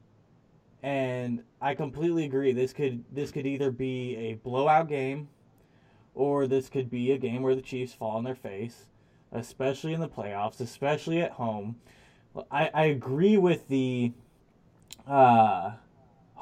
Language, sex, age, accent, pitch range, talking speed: English, male, 20-39, American, 125-145 Hz, 145 wpm